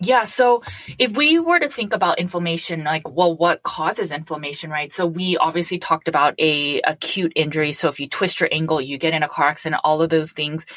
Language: English